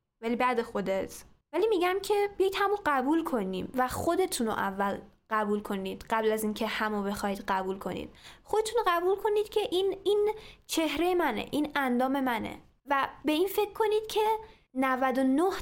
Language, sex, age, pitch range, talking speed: Persian, female, 10-29, 215-300 Hz, 155 wpm